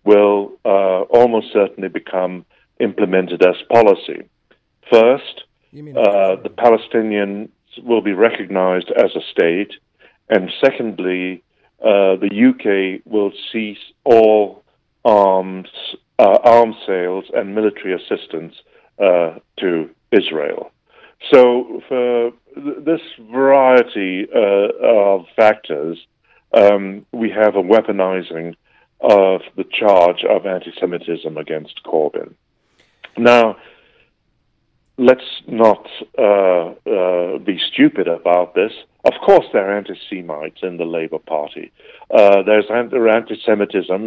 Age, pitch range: 60-79, 95-120 Hz